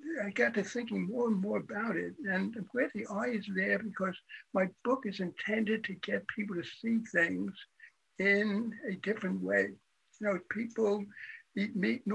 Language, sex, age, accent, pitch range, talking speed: English, male, 60-79, American, 190-225 Hz, 185 wpm